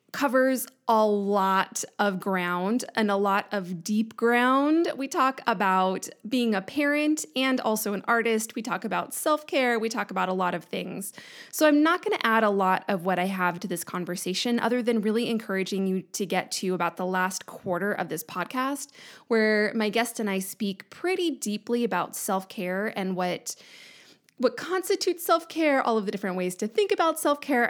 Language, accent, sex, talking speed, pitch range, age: English, American, female, 185 wpm, 190-260 Hz, 20-39